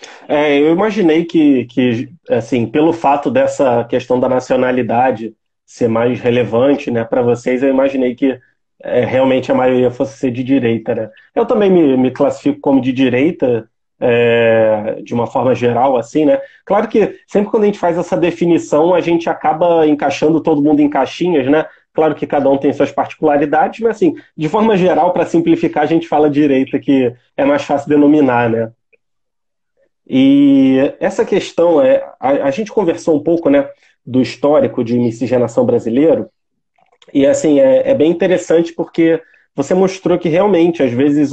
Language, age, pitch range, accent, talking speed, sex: Portuguese, 30-49, 130-185 Hz, Brazilian, 165 wpm, male